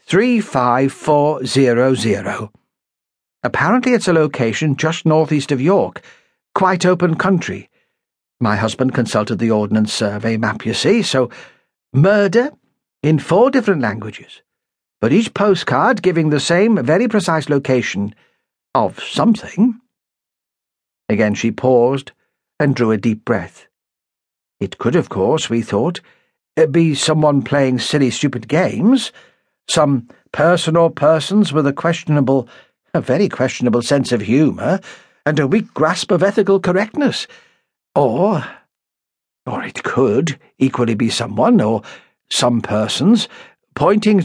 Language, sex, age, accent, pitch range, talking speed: English, male, 60-79, British, 125-195 Hz, 120 wpm